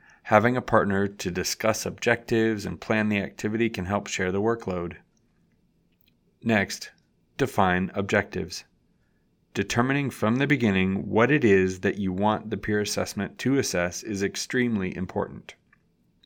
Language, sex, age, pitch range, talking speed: English, male, 30-49, 100-115 Hz, 135 wpm